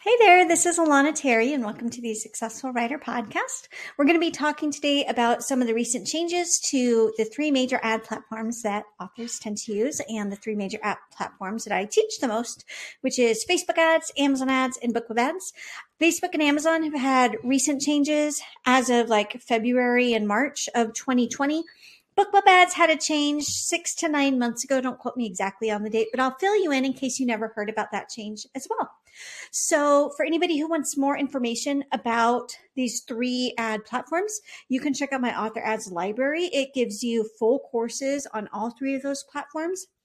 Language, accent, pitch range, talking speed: English, American, 225-290 Hz, 200 wpm